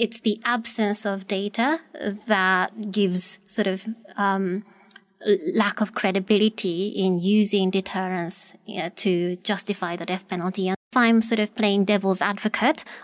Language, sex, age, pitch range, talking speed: English, female, 20-39, 200-230 Hz, 135 wpm